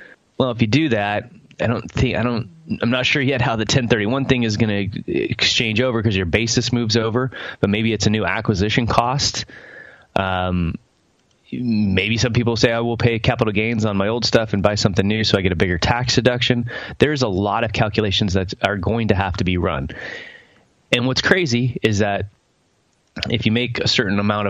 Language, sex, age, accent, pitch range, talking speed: English, male, 20-39, American, 95-120 Hz, 210 wpm